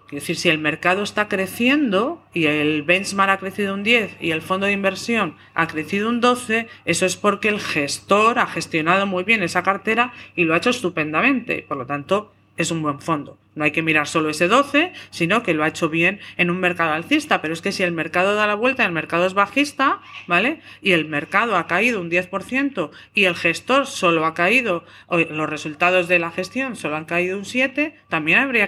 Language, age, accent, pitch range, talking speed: Spanish, 40-59, Spanish, 165-230 Hz, 220 wpm